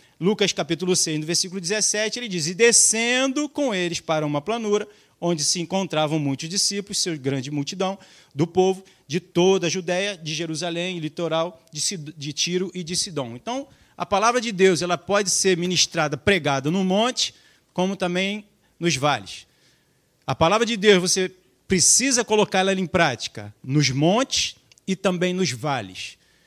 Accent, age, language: Brazilian, 40-59, Portuguese